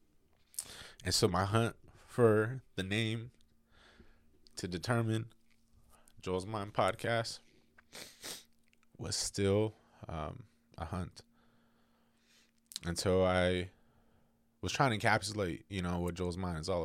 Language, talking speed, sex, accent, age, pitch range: English, 110 wpm, male, American, 20-39, 85-110 Hz